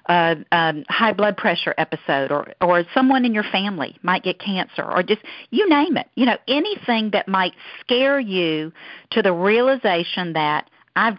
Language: English